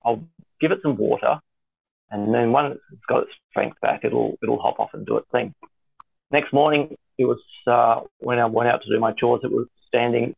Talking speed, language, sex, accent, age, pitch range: 215 wpm, English, male, Australian, 40-59, 115-140 Hz